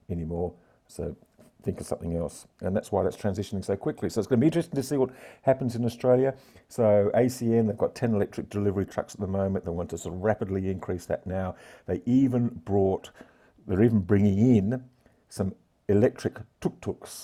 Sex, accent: male, British